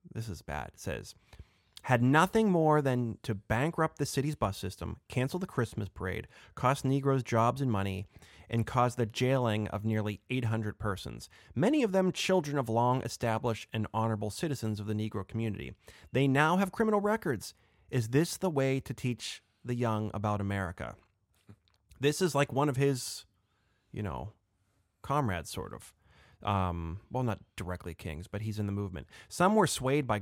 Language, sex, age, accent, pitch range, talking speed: English, male, 30-49, American, 100-130 Hz, 170 wpm